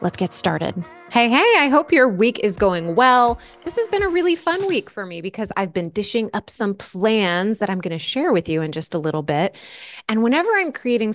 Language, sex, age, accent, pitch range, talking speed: English, female, 20-39, American, 175-240 Hz, 235 wpm